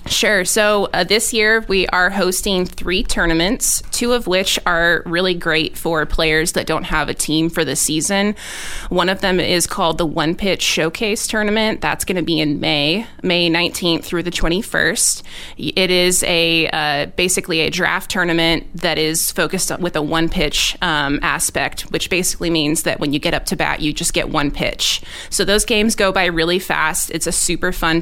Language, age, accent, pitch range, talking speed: English, 20-39, American, 160-190 Hz, 195 wpm